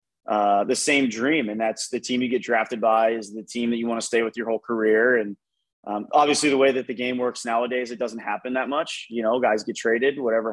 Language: English